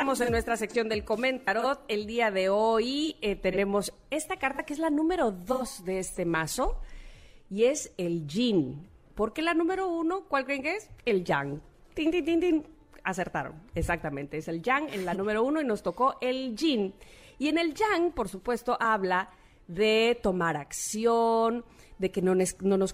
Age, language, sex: 40-59, Spanish, female